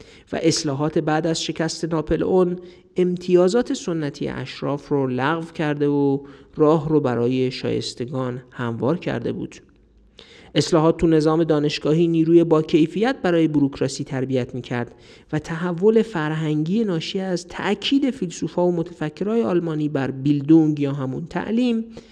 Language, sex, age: Persian, male, 50-69